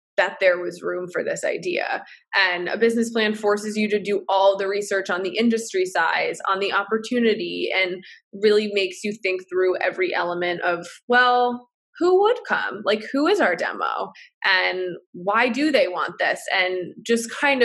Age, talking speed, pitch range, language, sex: 20-39, 175 wpm, 185-230 Hz, English, female